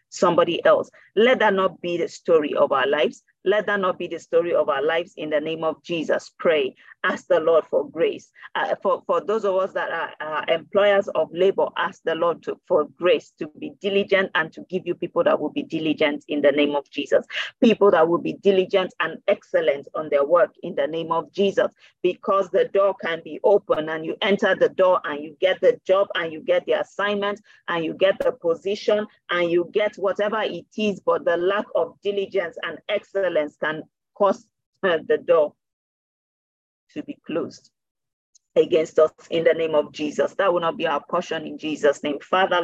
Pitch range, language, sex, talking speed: 170-225 Hz, English, female, 200 wpm